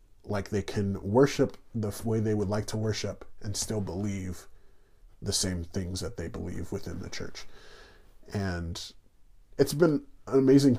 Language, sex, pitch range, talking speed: English, male, 100-115 Hz, 155 wpm